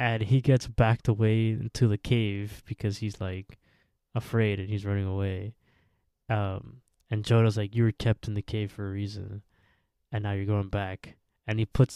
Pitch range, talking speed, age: 100-120 Hz, 185 wpm, 20-39